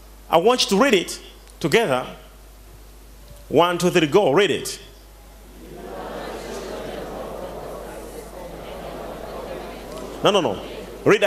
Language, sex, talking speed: English, male, 90 wpm